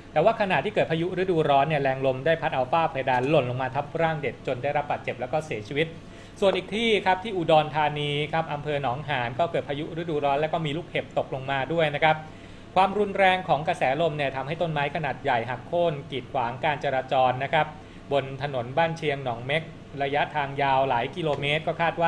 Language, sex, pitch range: Thai, male, 135-160 Hz